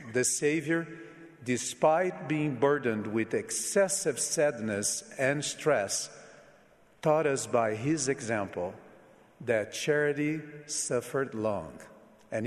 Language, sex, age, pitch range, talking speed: English, male, 50-69, 115-150 Hz, 95 wpm